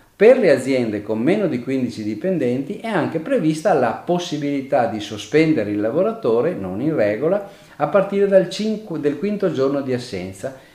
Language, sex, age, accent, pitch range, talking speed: Italian, male, 40-59, native, 115-160 Hz, 150 wpm